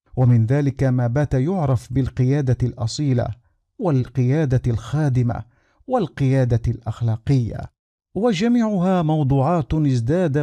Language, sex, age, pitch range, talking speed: Arabic, male, 50-69, 120-150 Hz, 80 wpm